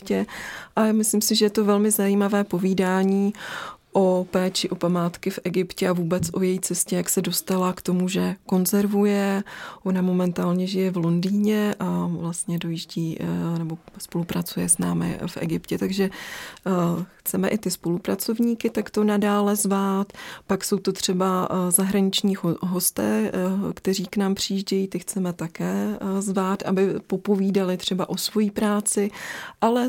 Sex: female